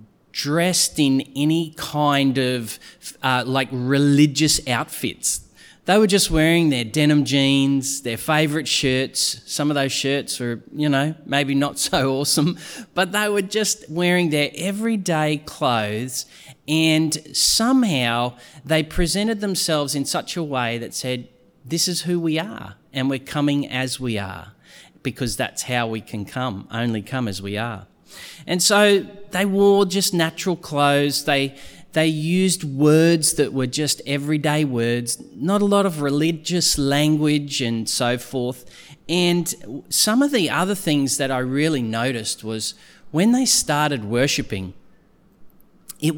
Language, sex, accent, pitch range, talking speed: English, male, Australian, 130-165 Hz, 145 wpm